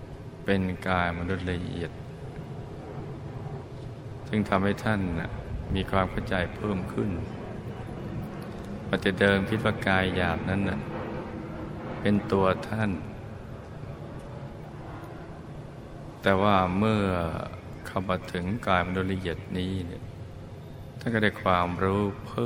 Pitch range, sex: 90-120 Hz, male